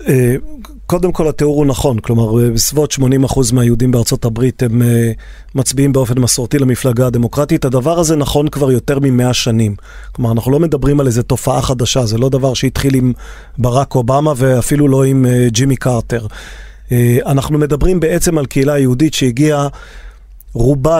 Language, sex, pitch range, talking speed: Hebrew, male, 125-150 Hz, 150 wpm